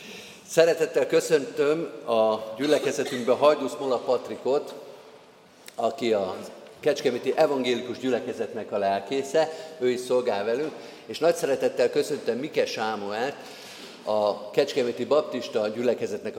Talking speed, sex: 105 wpm, male